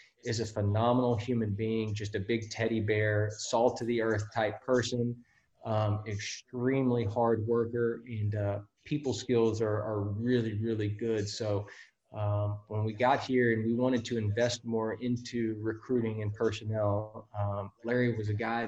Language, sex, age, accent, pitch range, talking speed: English, male, 20-39, American, 105-115 Hz, 160 wpm